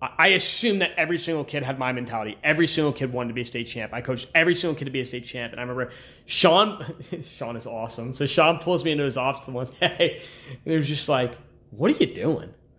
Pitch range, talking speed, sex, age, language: 130-170 Hz, 255 wpm, male, 20-39, English